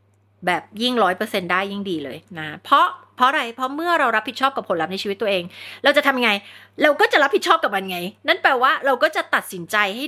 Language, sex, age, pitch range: Thai, female, 30-49, 150-250 Hz